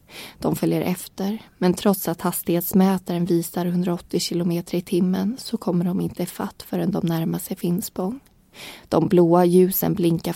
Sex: female